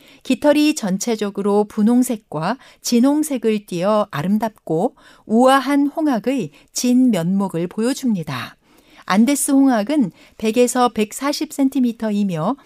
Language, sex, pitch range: Korean, female, 205-275 Hz